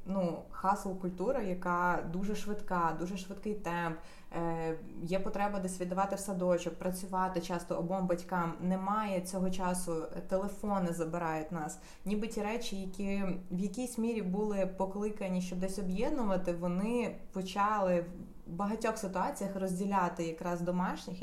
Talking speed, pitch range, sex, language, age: 125 wpm, 175-200 Hz, female, Ukrainian, 20-39